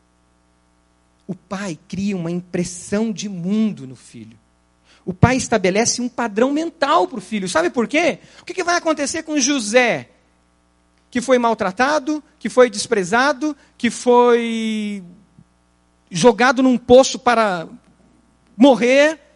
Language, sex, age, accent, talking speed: Portuguese, male, 40-59, Brazilian, 125 wpm